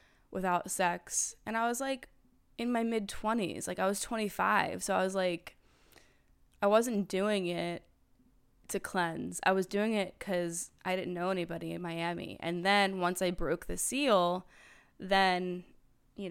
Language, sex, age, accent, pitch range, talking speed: English, female, 20-39, American, 170-200 Hz, 160 wpm